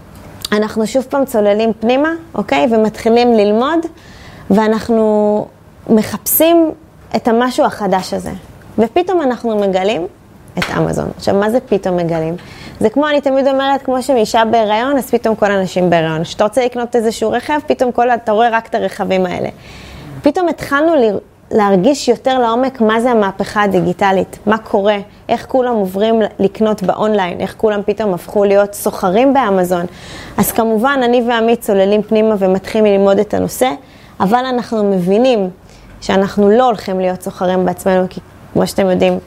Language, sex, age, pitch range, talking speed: Hebrew, female, 20-39, 195-245 Hz, 150 wpm